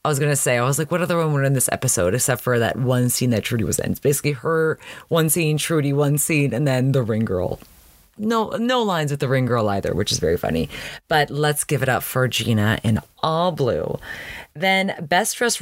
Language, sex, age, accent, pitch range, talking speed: English, female, 30-49, American, 120-165 Hz, 235 wpm